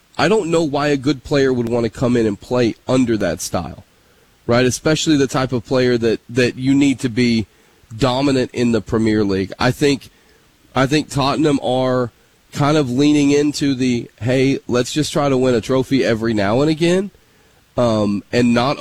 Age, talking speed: 30-49, 190 wpm